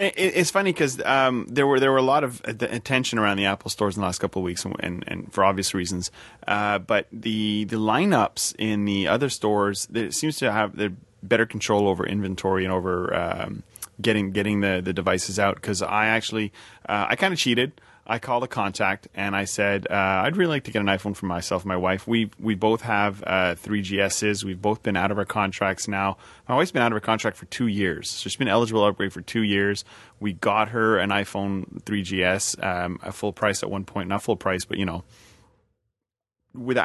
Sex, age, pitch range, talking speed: male, 30-49, 100-115 Hz, 220 wpm